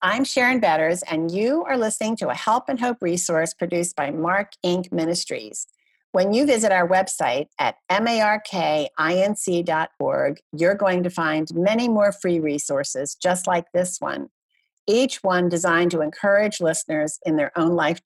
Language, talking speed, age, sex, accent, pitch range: English, 155 wpm, 50-69, female, American, 165-205 Hz